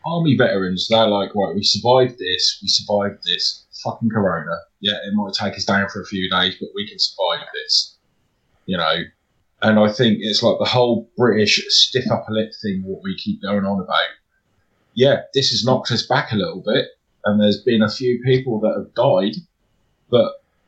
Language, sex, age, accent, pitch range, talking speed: English, male, 30-49, British, 100-130 Hz, 195 wpm